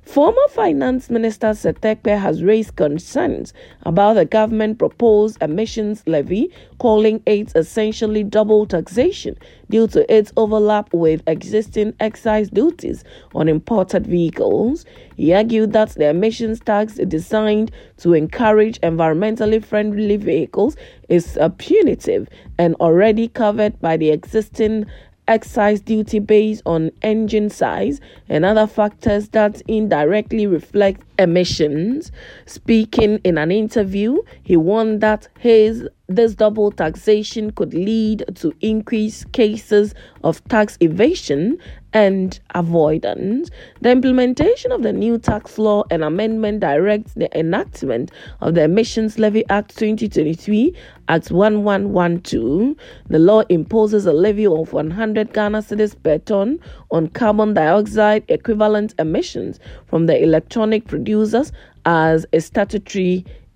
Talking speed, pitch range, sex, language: 115 wpm, 185-220 Hz, female, English